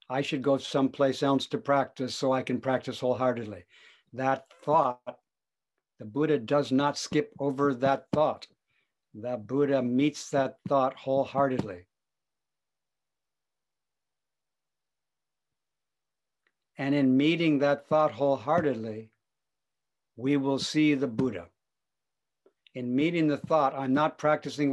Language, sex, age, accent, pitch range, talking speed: English, male, 60-79, American, 130-150 Hz, 110 wpm